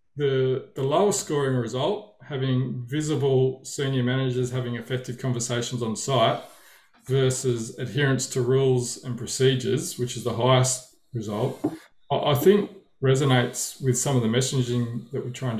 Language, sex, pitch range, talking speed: English, male, 125-140 Hz, 140 wpm